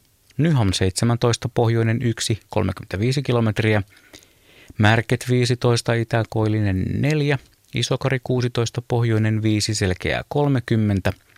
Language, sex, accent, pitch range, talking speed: Finnish, male, native, 100-125 Hz, 85 wpm